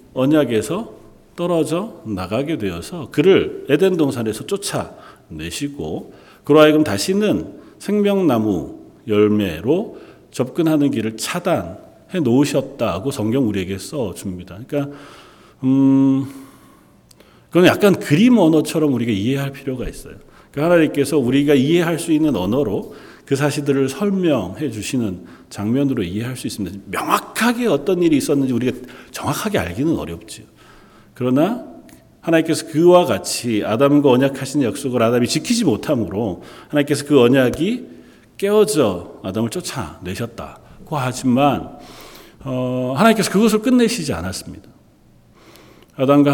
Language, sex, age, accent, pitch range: Korean, male, 40-59, native, 115-160 Hz